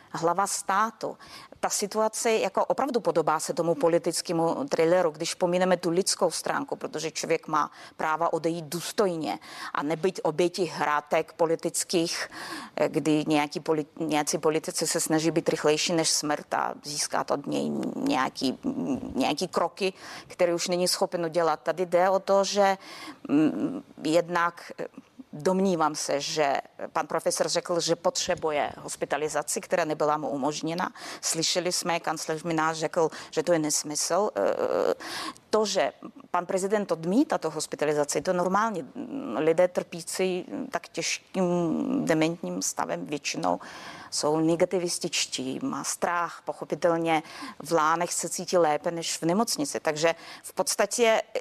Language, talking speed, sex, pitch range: Czech, 130 wpm, female, 160-195 Hz